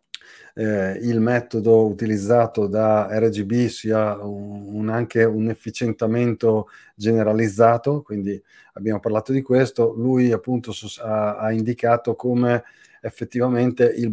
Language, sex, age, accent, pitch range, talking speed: Italian, male, 30-49, native, 110-125 Hz, 110 wpm